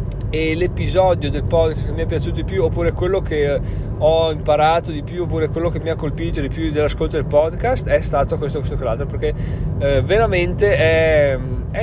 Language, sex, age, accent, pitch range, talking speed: Italian, male, 30-49, native, 130-165 Hz, 195 wpm